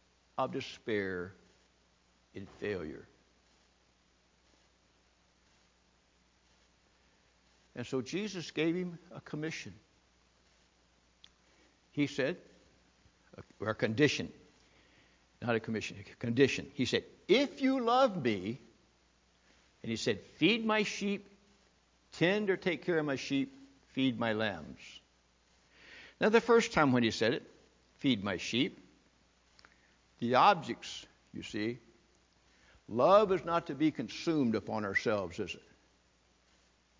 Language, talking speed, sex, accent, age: English, 110 wpm, male, American, 60-79